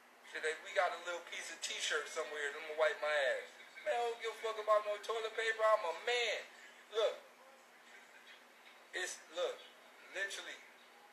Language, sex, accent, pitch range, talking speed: English, male, American, 210-280 Hz, 165 wpm